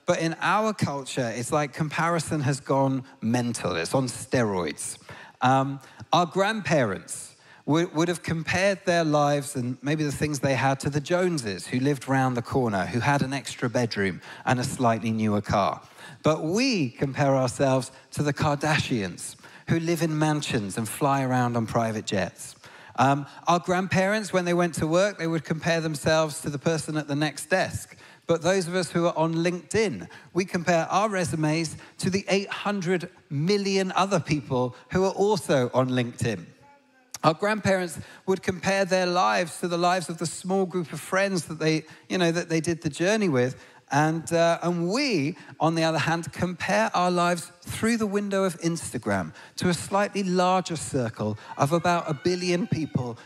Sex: male